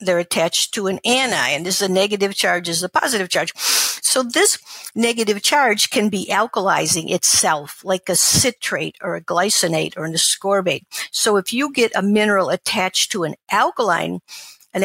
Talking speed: 175 wpm